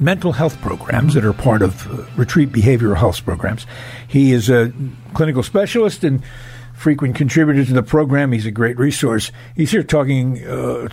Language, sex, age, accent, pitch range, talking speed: English, male, 60-79, American, 120-140 Hz, 170 wpm